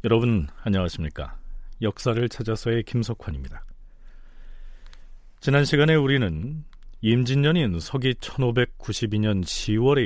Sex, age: male, 40-59